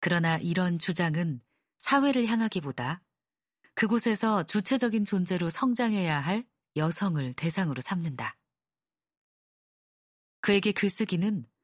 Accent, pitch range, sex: native, 150-205 Hz, female